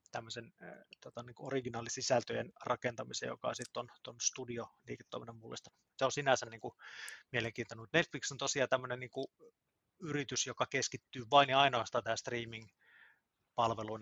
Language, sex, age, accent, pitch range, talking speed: Finnish, male, 30-49, native, 115-130 Hz, 130 wpm